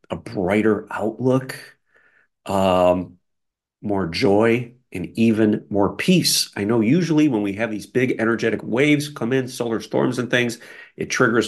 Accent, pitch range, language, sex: American, 100-120 Hz, English, male